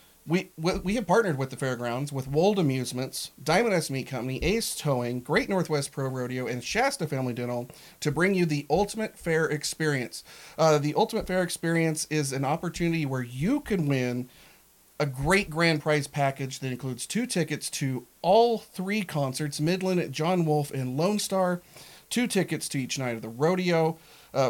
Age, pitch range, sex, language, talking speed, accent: 40-59, 135-180 Hz, male, English, 175 wpm, American